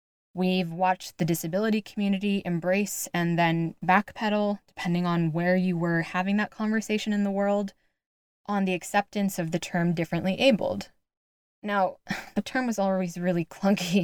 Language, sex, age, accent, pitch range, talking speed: English, female, 20-39, American, 165-195 Hz, 150 wpm